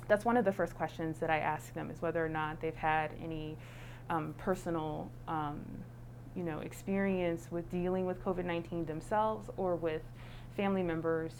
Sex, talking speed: female, 170 wpm